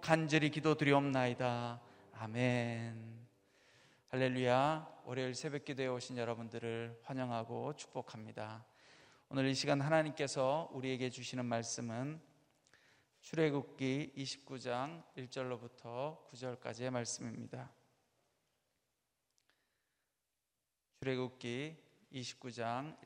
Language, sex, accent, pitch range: Korean, male, native, 115-135 Hz